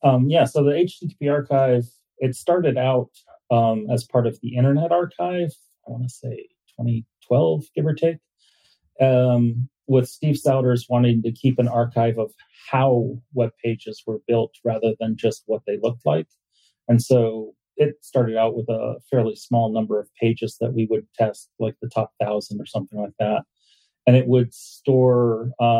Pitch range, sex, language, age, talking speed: 115-130 Hz, male, English, 30-49, 175 wpm